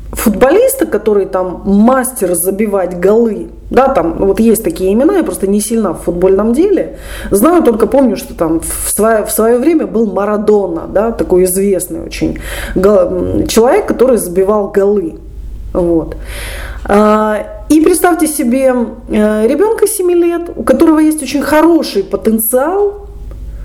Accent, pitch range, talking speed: native, 190-290 Hz, 130 wpm